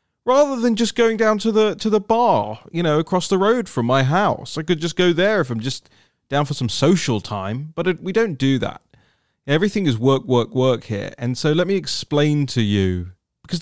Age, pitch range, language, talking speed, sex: 30-49, 130-180 Hz, English, 225 wpm, male